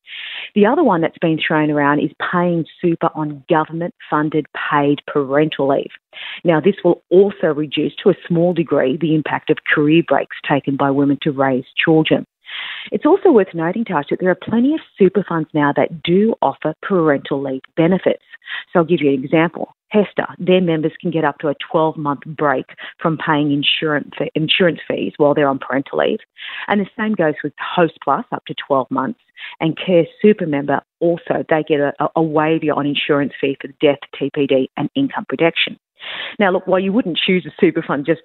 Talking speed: 185 wpm